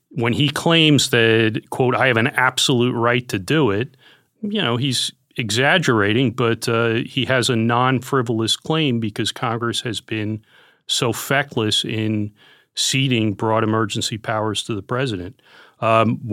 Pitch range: 110-130 Hz